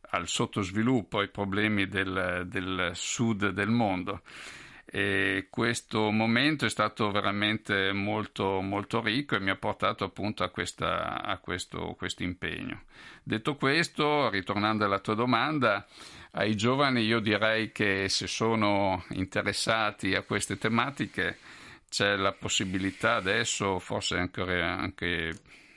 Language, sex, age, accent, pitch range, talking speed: Italian, male, 50-69, native, 100-115 Hz, 115 wpm